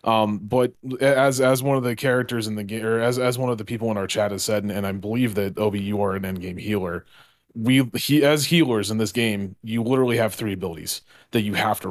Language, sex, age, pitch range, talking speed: English, male, 30-49, 100-120 Hz, 250 wpm